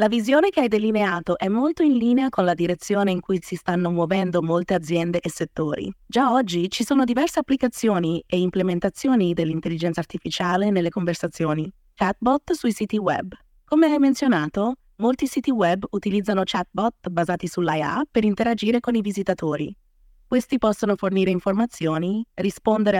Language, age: Italian, 20-39